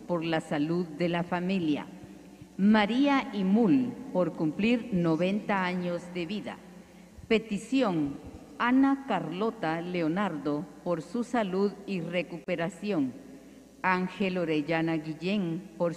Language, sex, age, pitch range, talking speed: Spanish, female, 50-69, 160-210 Hz, 100 wpm